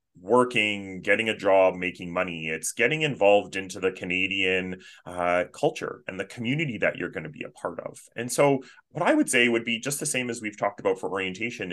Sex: male